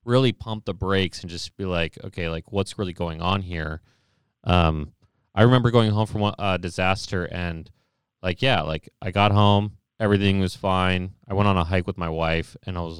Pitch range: 90-115 Hz